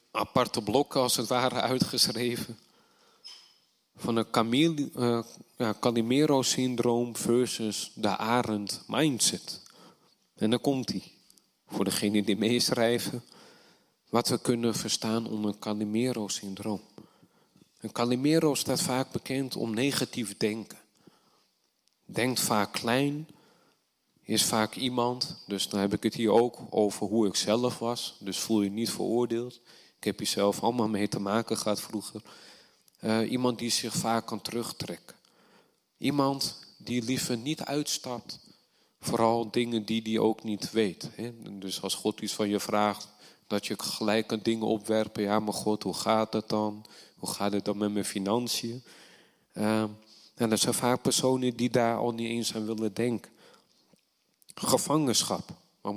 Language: Dutch